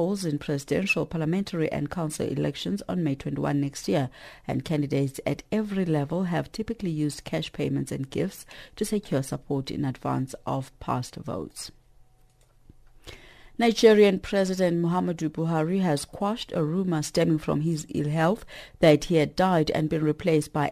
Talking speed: 150 wpm